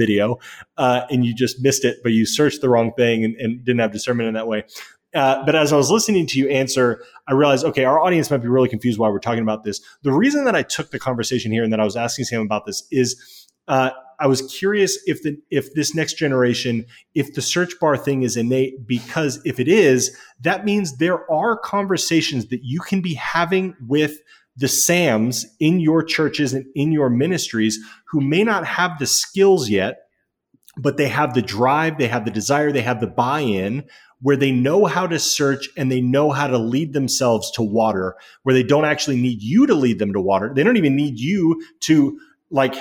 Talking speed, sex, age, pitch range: 215 wpm, male, 30-49, 125-155 Hz